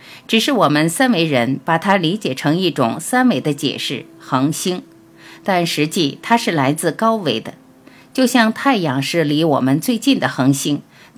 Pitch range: 145-210 Hz